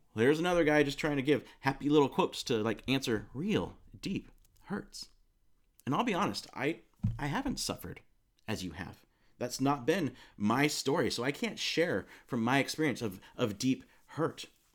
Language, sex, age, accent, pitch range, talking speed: English, male, 30-49, American, 105-150 Hz, 175 wpm